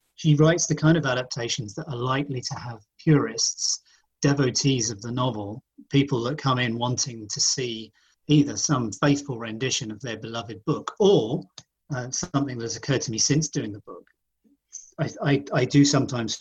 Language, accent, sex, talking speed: English, British, male, 170 wpm